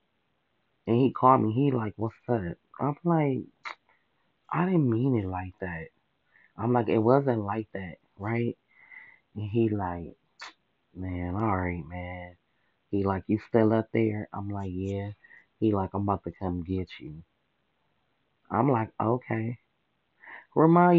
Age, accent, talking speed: 20-39, American, 145 wpm